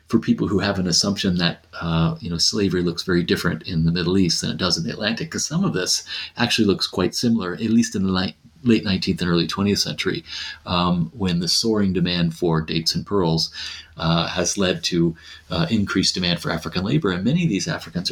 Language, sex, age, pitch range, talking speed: English, male, 40-59, 85-115 Hz, 220 wpm